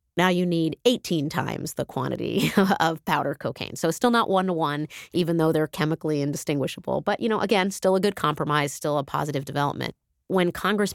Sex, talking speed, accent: female, 180 wpm, American